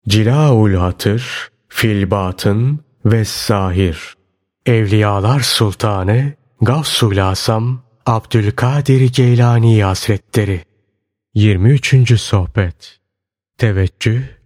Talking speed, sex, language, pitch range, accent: 60 wpm, male, Turkish, 100-125 Hz, native